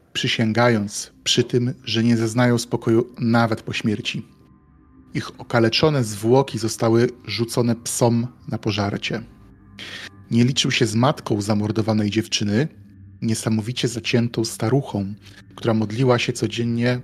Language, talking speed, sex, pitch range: Polish, 115 wpm, male, 105-120 Hz